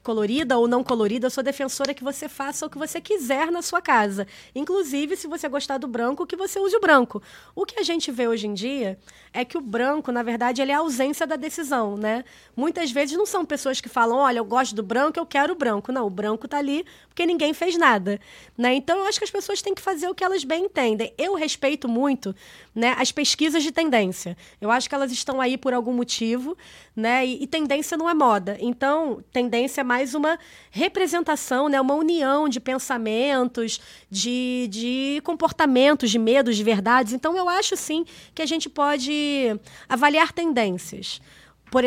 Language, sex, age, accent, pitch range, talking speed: Portuguese, female, 20-39, Brazilian, 240-315 Hz, 205 wpm